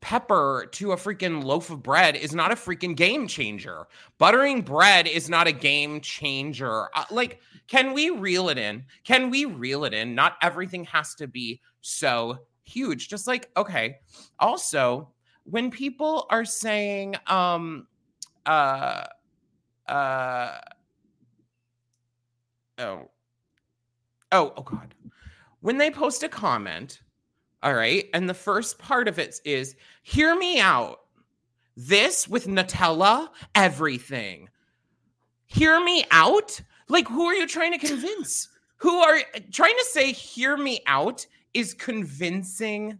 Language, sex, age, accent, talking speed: English, male, 30-49, American, 135 wpm